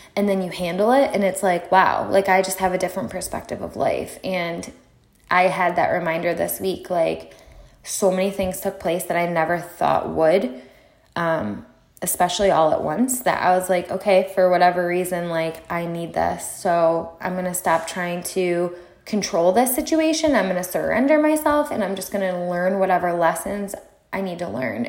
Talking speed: 195 wpm